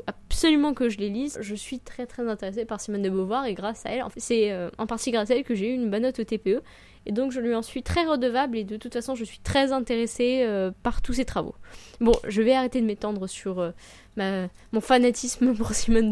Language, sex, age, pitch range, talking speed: French, female, 10-29, 210-260 Hz, 250 wpm